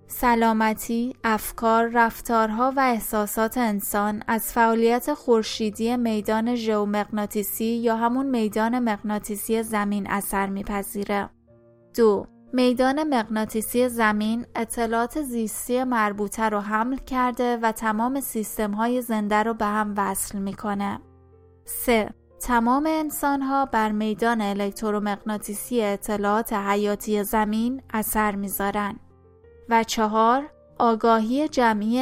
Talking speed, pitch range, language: 95 wpm, 210-240 Hz, Persian